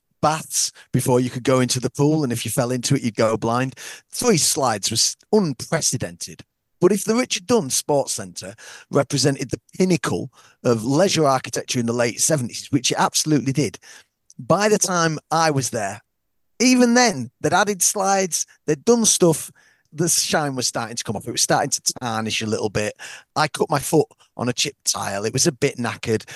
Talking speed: 190 wpm